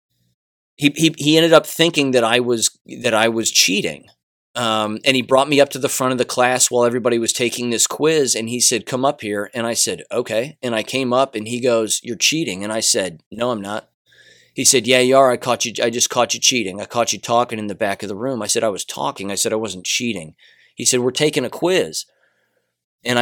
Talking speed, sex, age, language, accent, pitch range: 250 wpm, male, 30-49, English, American, 115-135 Hz